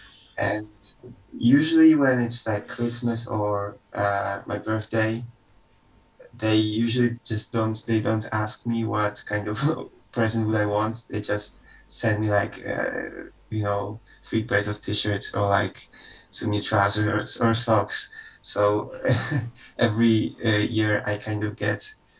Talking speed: 145 wpm